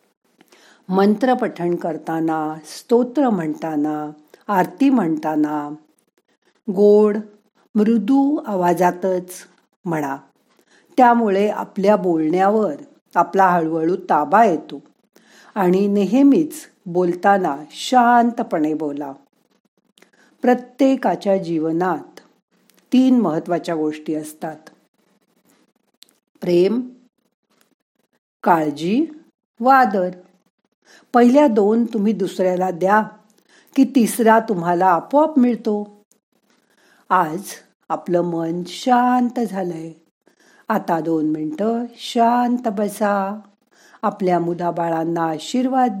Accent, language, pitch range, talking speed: native, Marathi, 175-235 Hz, 70 wpm